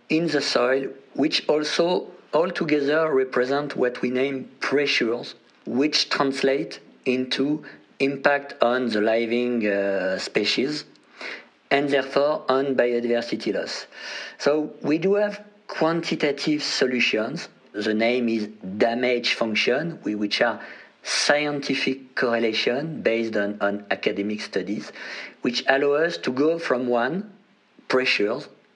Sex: male